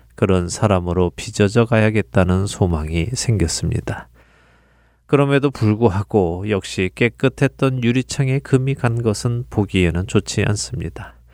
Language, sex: Korean, male